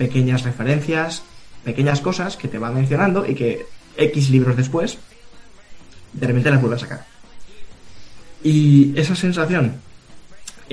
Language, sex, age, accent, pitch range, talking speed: Spanish, male, 20-39, Spanish, 125-150 Hz, 130 wpm